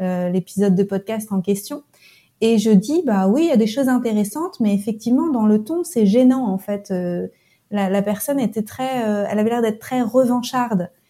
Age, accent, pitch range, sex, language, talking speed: 30-49, French, 205-250 Hz, female, French, 210 wpm